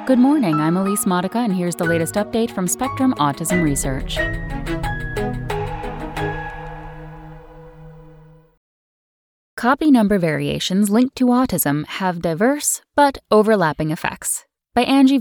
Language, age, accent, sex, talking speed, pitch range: English, 10-29, American, female, 105 wpm, 155-240 Hz